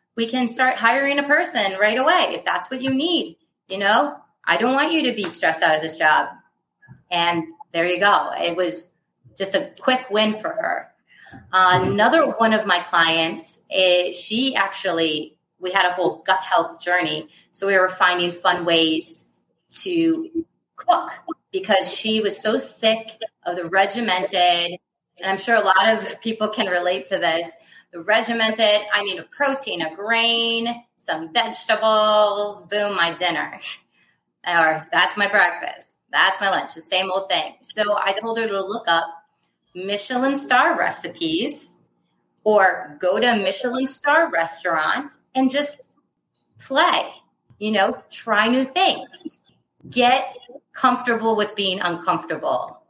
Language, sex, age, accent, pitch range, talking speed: English, female, 30-49, American, 180-250 Hz, 150 wpm